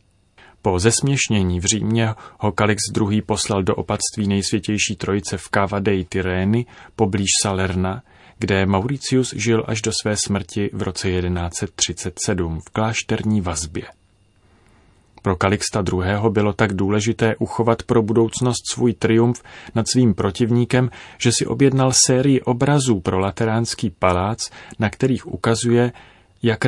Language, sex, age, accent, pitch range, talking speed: Czech, male, 30-49, native, 95-115 Hz, 125 wpm